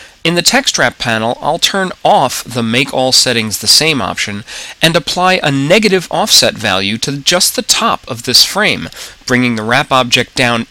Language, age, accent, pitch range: English, 40-59, American, 115-170 Hz